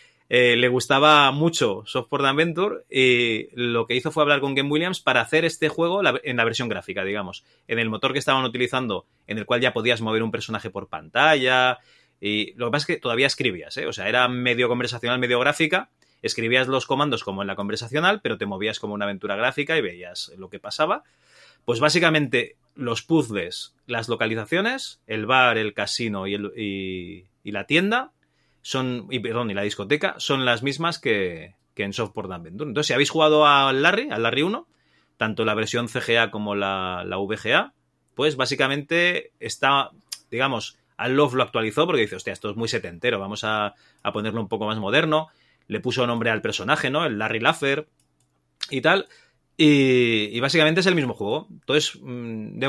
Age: 30-49